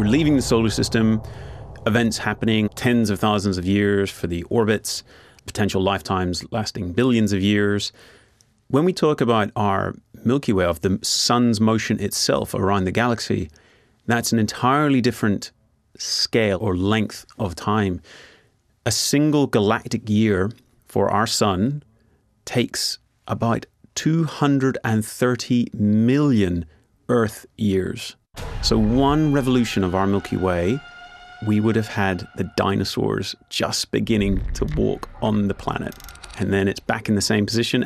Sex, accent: male, British